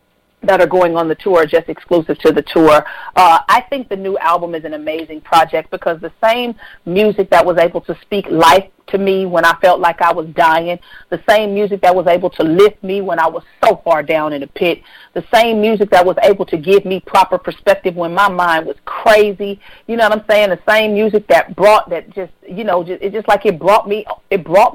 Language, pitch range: English, 165-200 Hz